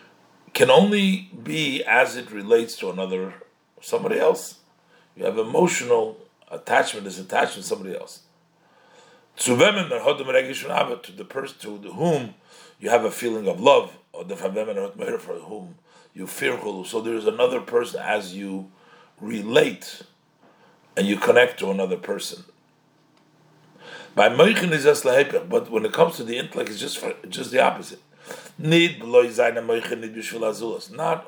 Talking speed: 125 wpm